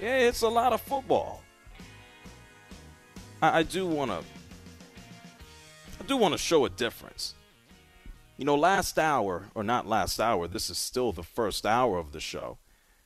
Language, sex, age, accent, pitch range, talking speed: English, male, 40-59, American, 95-155 Hz, 150 wpm